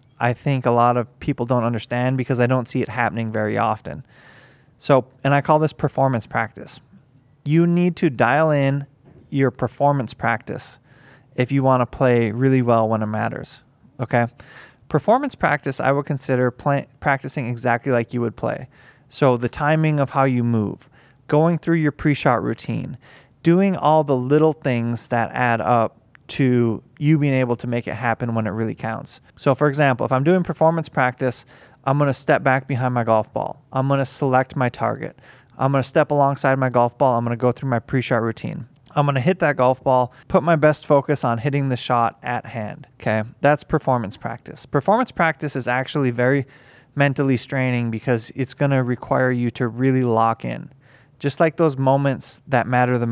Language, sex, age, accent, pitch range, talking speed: English, male, 20-39, American, 120-145 Hz, 185 wpm